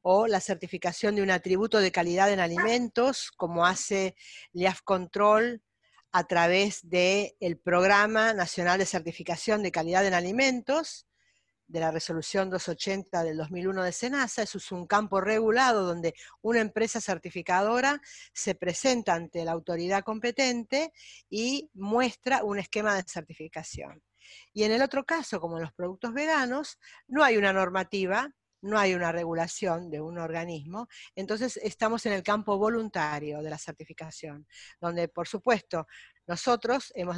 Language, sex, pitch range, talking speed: Spanish, female, 170-225 Hz, 145 wpm